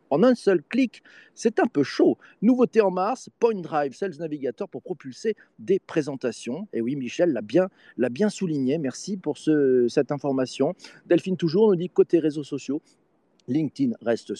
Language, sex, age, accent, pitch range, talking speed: French, male, 40-59, French, 130-200 Hz, 170 wpm